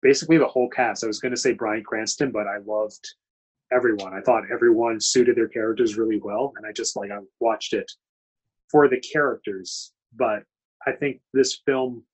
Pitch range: 105-160 Hz